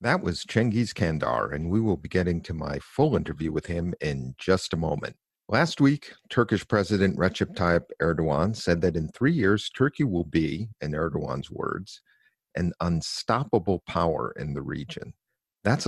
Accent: American